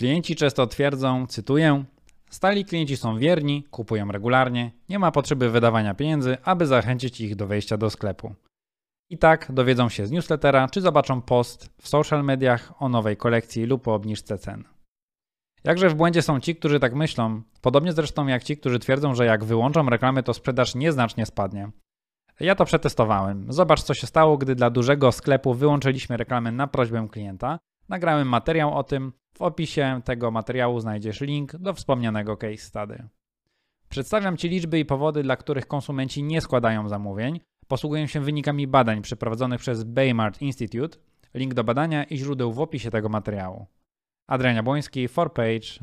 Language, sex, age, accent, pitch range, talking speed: Polish, male, 20-39, native, 115-145 Hz, 160 wpm